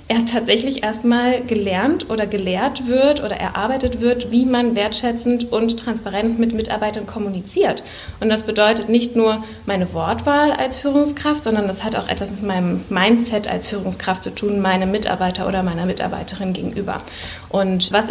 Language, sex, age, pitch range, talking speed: German, female, 20-39, 195-230 Hz, 155 wpm